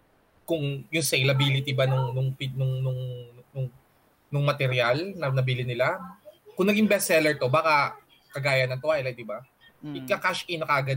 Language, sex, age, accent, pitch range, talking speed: Filipino, male, 20-39, native, 130-170 Hz, 125 wpm